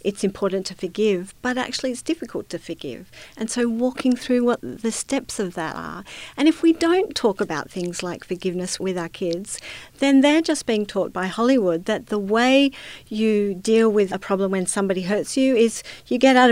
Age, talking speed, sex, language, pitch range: 50-69, 200 wpm, female, English, 185-245 Hz